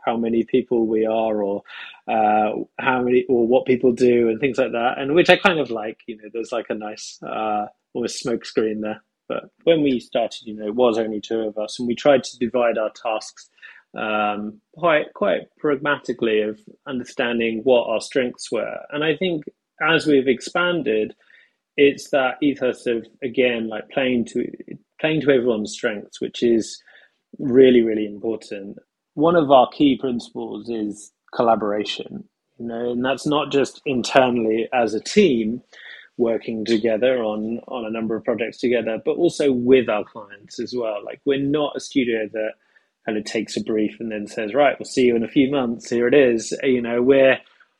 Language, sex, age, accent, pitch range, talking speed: English, male, 30-49, British, 110-140 Hz, 185 wpm